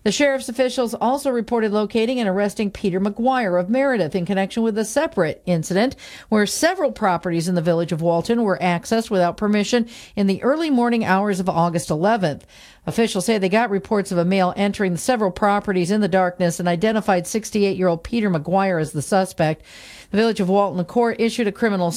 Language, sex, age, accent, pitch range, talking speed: English, female, 50-69, American, 190-240 Hz, 190 wpm